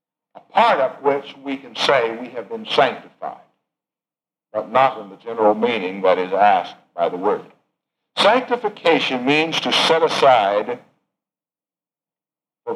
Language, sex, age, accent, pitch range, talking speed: English, male, 60-79, American, 150-215 Hz, 130 wpm